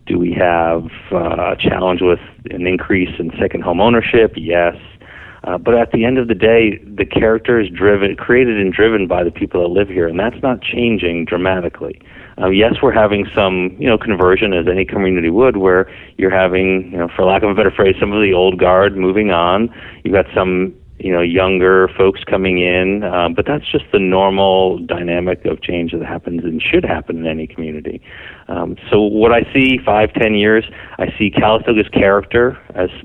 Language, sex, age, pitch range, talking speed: English, male, 40-59, 90-110 Hz, 195 wpm